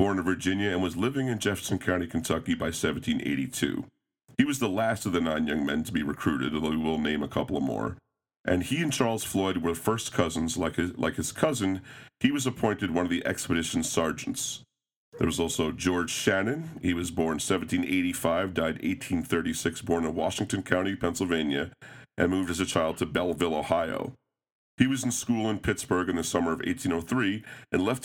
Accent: American